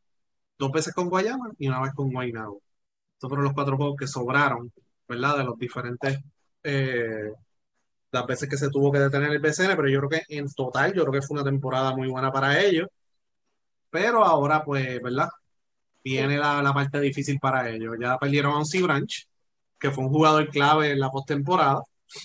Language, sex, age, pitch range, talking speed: Spanish, male, 30-49, 130-155 Hz, 190 wpm